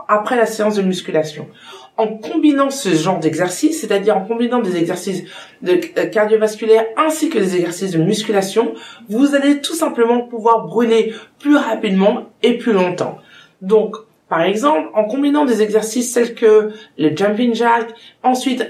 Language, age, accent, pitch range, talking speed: French, 20-39, French, 195-240 Hz, 150 wpm